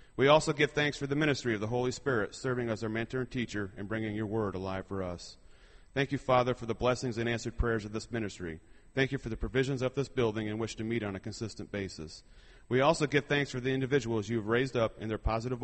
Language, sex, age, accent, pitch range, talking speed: English, male, 30-49, American, 105-130 Hz, 255 wpm